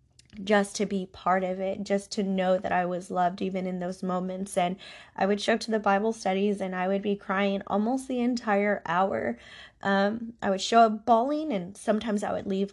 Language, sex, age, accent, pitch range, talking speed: English, female, 10-29, American, 185-205 Hz, 215 wpm